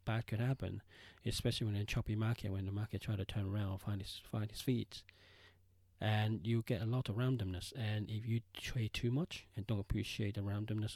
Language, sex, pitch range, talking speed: English, male, 95-115 Hz, 215 wpm